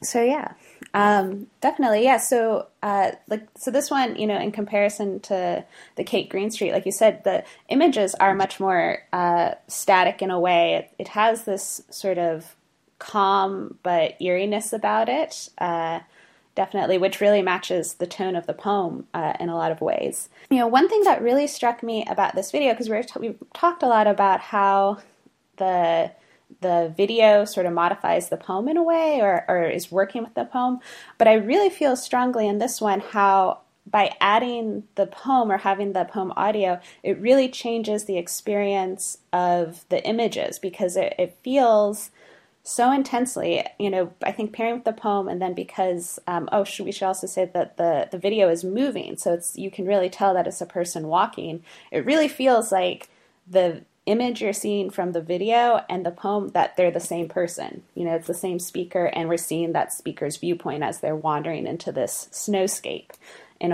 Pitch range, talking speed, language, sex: 180-230 Hz, 185 wpm, English, female